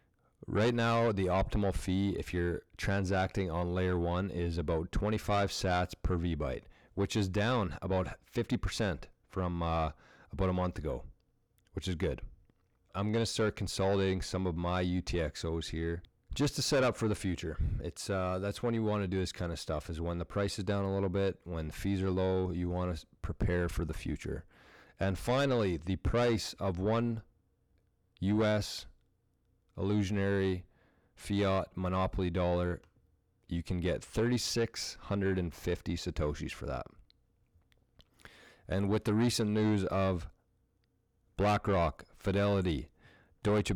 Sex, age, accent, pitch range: male, 30-49, American, 85-100 Hz